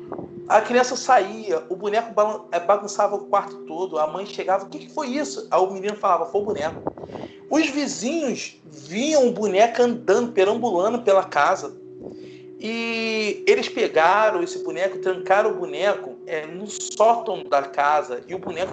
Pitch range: 165-225 Hz